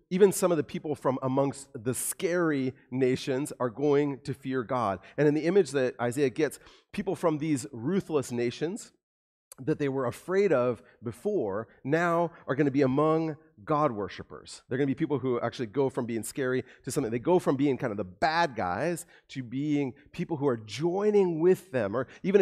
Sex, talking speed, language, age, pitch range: male, 195 wpm, English, 30-49, 120-155 Hz